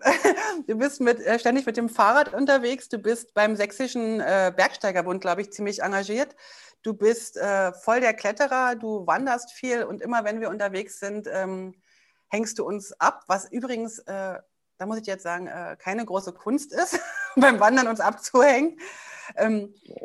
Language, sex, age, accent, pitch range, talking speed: German, female, 30-49, German, 195-250 Hz, 170 wpm